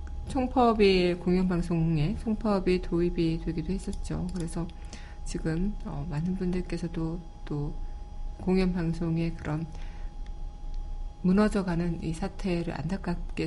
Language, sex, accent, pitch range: Korean, female, native, 155-190 Hz